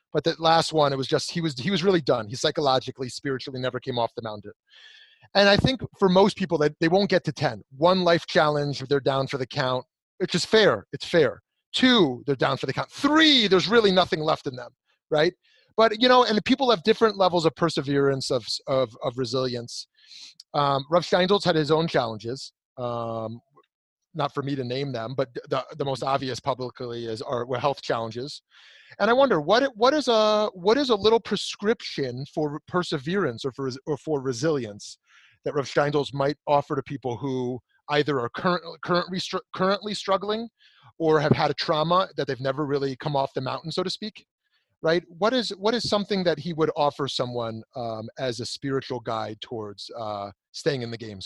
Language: English